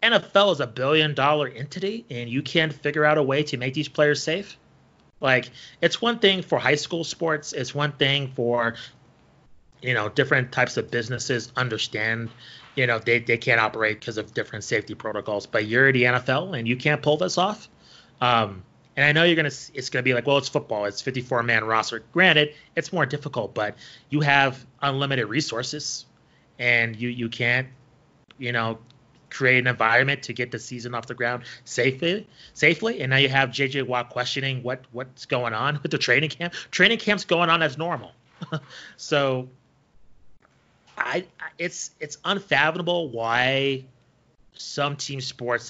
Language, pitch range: English, 120-150 Hz